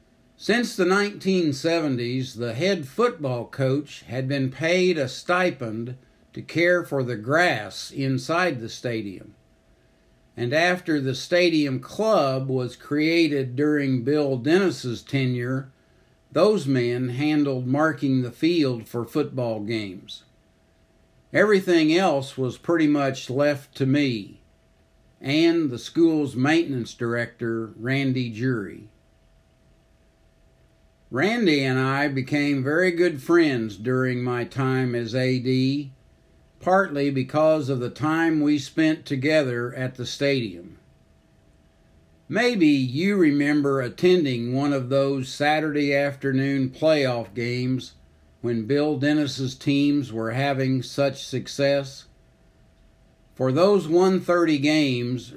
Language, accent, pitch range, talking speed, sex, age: English, American, 125-150 Hz, 110 wpm, male, 60-79